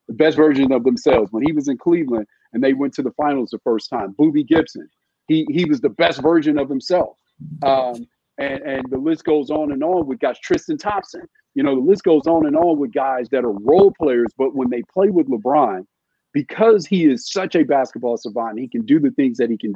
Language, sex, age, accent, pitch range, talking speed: English, male, 50-69, American, 130-215 Hz, 235 wpm